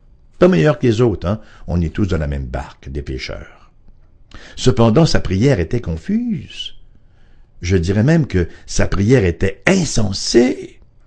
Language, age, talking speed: English, 60-79, 150 wpm